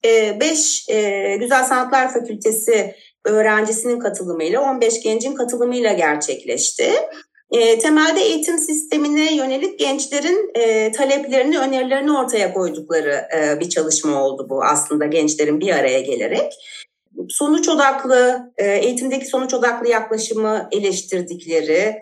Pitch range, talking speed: 200-275 Hz, 95 wpm